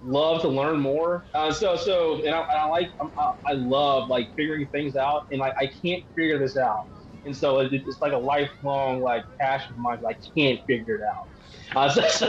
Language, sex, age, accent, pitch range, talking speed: English, male, 20-39, American, 130-160 Hz, 215 wpm